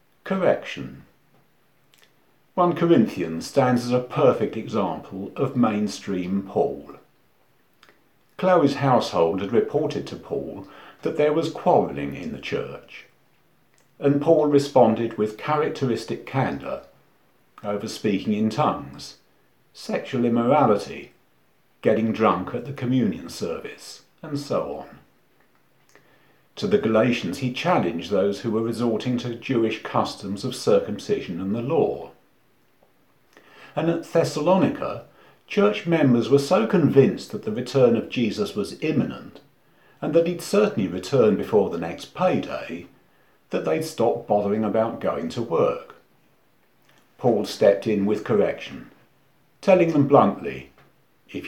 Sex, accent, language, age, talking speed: male, British, English, 50-69, 120 wpm